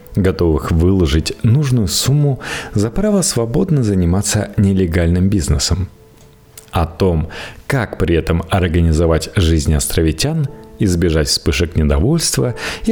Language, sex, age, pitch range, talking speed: Russian, male, 40-59, 80-115 Hz, 100 wpm